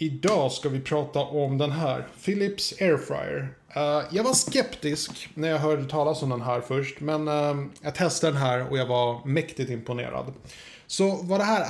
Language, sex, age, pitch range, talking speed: Swedish, male, 30-49, 130-155 Hz, 175 wpm